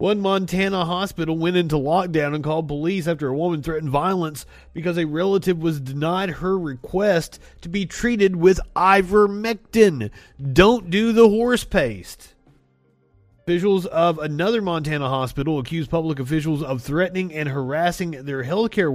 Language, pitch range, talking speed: English, 135-195 Hz, 145 wpm